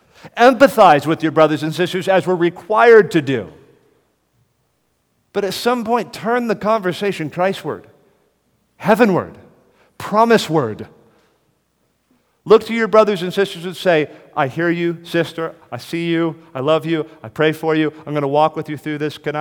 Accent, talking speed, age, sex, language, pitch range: American, 160 wpm, 40-59, male, English, 120-175 Hz